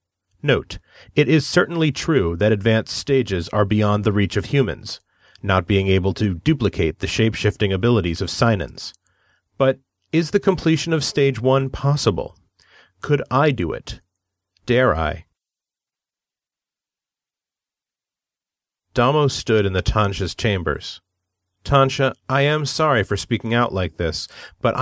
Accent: American